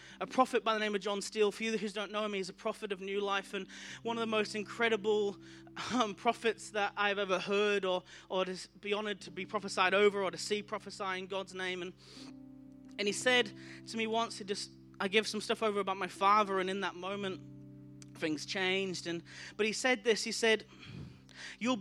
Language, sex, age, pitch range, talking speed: English, male, 20-39, 190-230 Hz, 215 wpm